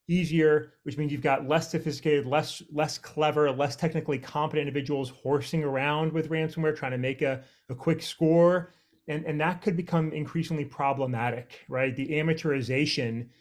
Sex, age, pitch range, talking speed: male, 30-49, 130-155 Hz, 155 wpm